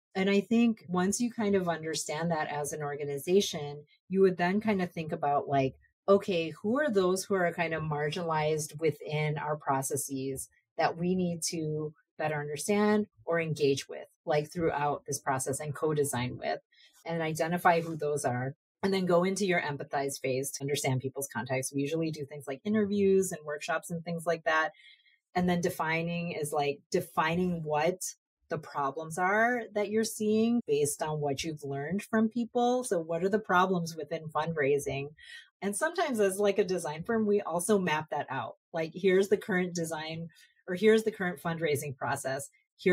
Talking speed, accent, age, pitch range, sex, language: 180 wpm, American, 30-49, 150-195 Hz, female, English